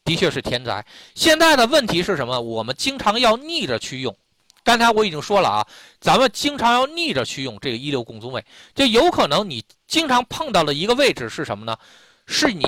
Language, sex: Chinese, male